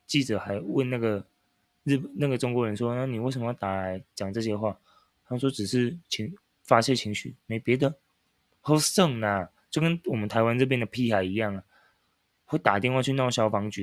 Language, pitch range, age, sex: Chinese, 105-135 Hz, 20-39, male